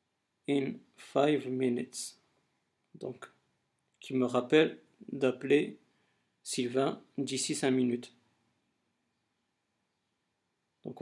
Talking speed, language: 70 wpm, French